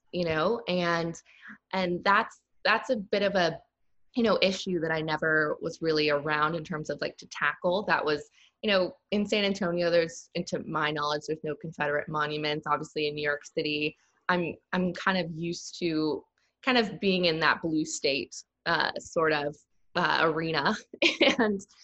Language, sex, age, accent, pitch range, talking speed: English, female, 20-39, American, 155-210 Hz, 175 wpm